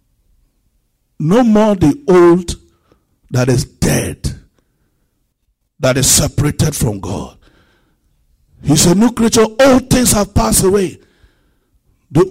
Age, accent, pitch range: 60-79, Nigerian, 155-235 Hz